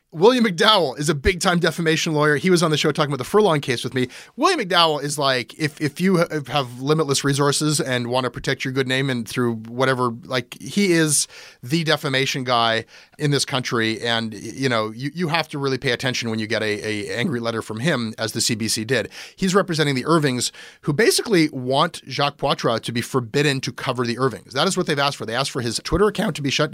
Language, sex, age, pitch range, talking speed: English, male, 30-49, 125-160 Hz, 235 wpm